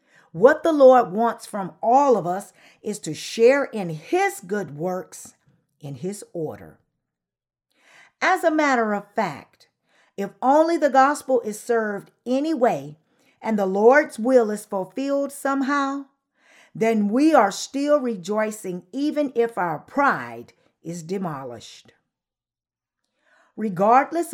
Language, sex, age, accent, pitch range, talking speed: English, female, 50-69, American, 185-275 Hz, 125 wpm